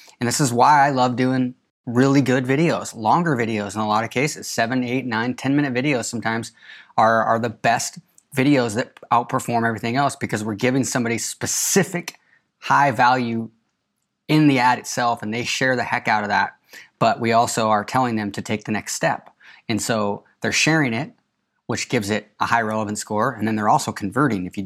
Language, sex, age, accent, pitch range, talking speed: English, male, 20-39, American, 115-140 Hz, 200 wpm